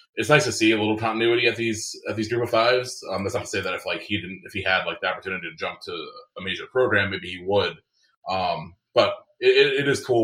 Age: 20-39